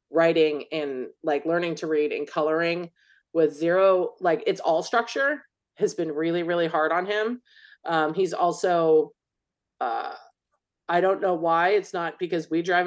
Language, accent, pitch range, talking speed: English, American, 160-215 Hz, 160 wpm